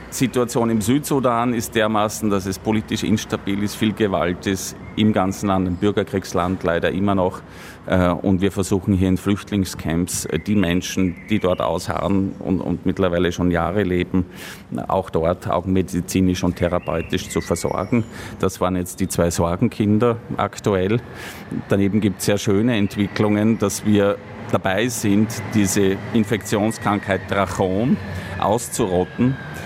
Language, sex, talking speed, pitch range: German, male, 135 wpm, 90-105 Hz